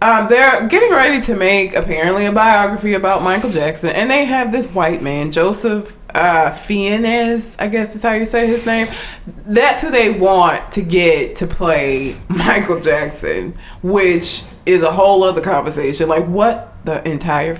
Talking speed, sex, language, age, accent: 165 wpm, female, English, 20-39, American